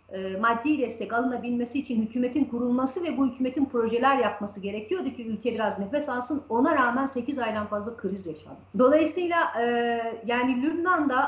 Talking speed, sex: 150 wpm, female